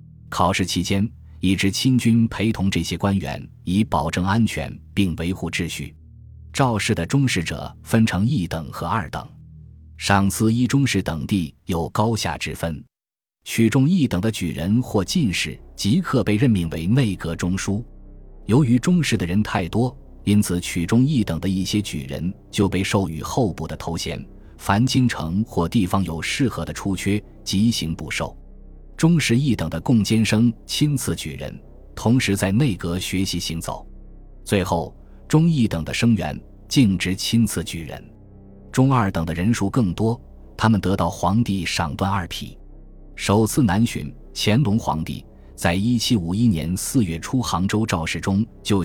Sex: male